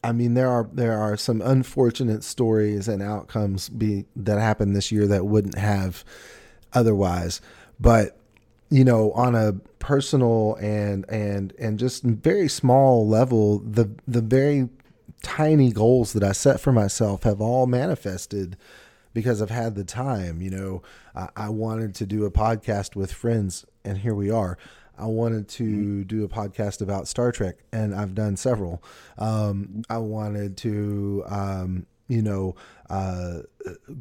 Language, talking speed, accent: English, 150 wpm, American